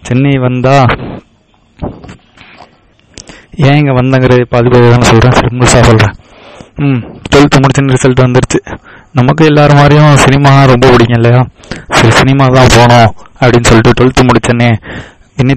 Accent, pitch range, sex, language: native, 115-130 Hz, male, Tamil